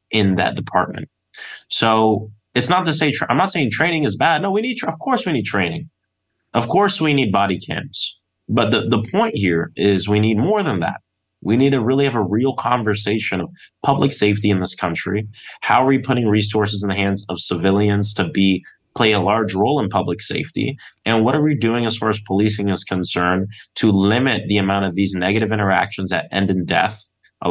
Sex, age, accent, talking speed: male, 20-39, American, 210 wpm